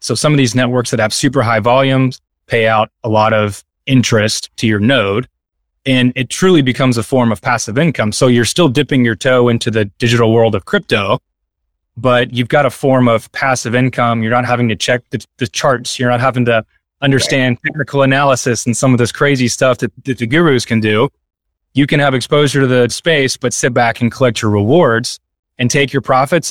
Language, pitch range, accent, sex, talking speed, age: English, 110-135 Hz, American, male, 210 wpm, 20-39